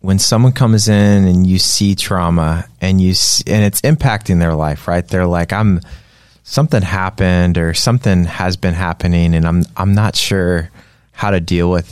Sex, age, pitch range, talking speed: male, 20-39, 90-105 Hz, 175 wpm